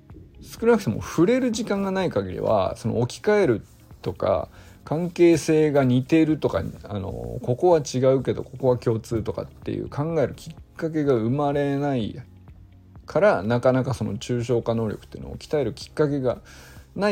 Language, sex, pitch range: Japanese, male, 110-150 Hz